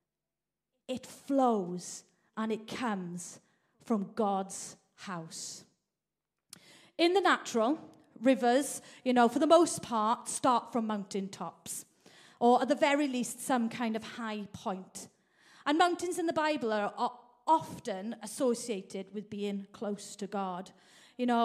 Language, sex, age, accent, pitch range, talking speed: English, female, 40-59, British, 215-285 Hz, 130 wpm